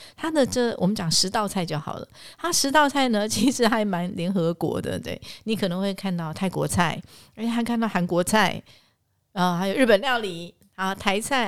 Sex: female